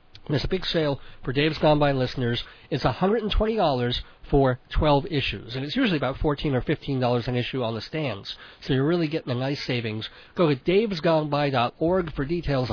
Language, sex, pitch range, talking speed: English, male, 140-235 Hz, 185 wpm